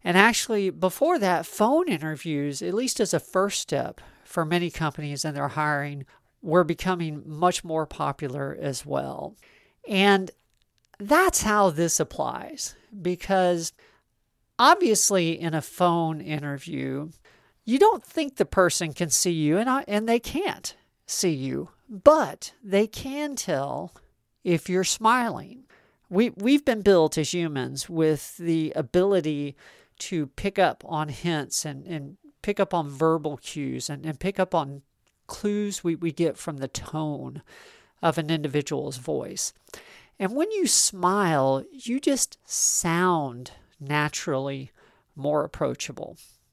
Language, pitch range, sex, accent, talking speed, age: English, 150-200 Hz, male, American, 135 wpm, 50-69